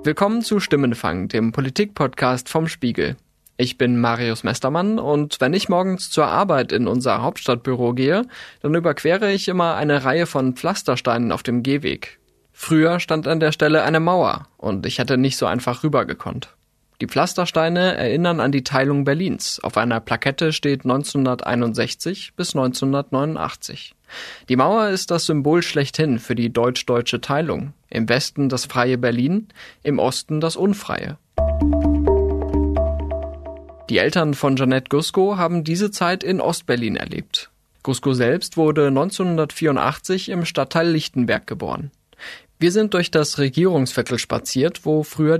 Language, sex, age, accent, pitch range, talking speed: German, male, 20-39, German, 125-170 Hz, 140 wpm